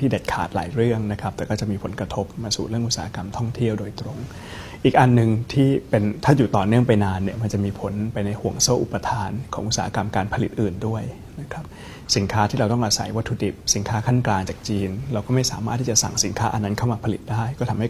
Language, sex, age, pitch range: Thai, male, 20-39, 100-120 Hz